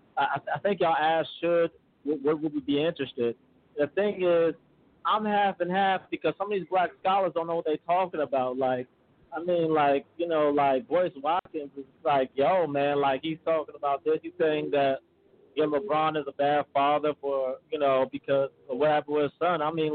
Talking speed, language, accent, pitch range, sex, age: 215 wpm, English, American, 145-165 Hz, male, 30-49